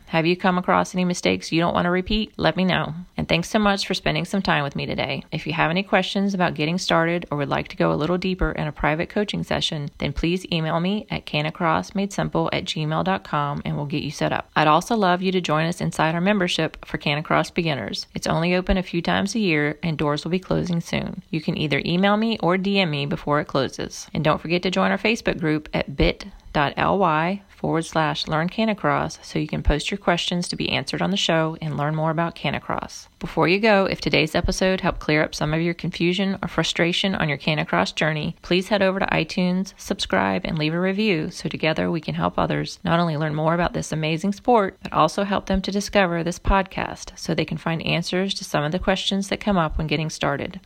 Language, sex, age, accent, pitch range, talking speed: English, female, 30-49, American, 155-190 Hz, 230 wpm